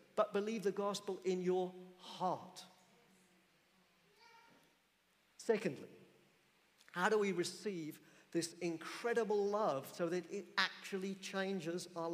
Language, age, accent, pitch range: English, 50-69, British, 180-220 Hz